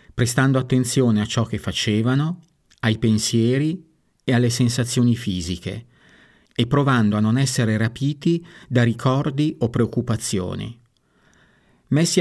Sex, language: male, Italian